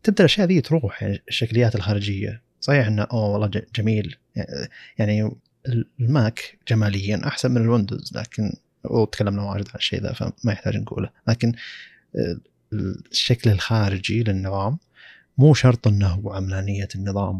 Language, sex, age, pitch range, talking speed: Arabic, male, 30-49, 100-125 Hz, 130 wpm